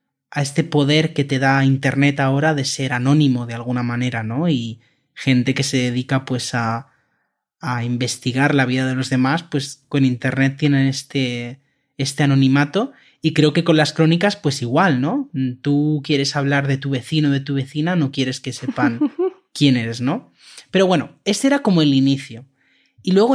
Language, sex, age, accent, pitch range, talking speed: Spanish, male, 20-39, Spanish, 135-160 Hz, 180 wpm